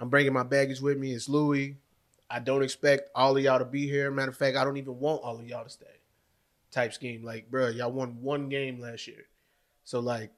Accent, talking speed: American, 235 wpm